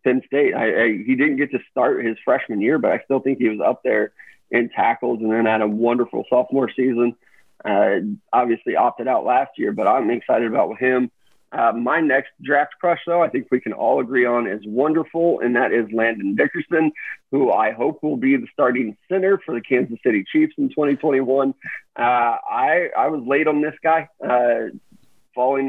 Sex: male